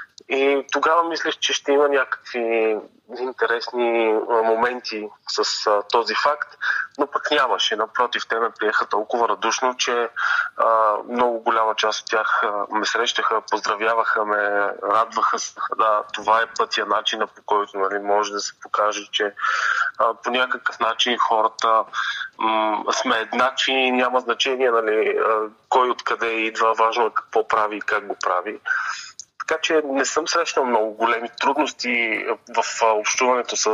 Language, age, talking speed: Bulgarian, 20-39, 140 wpm